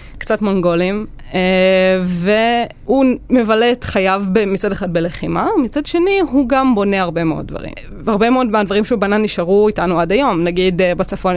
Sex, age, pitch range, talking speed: female, 20-39, 180-230 Hz, 155 wpm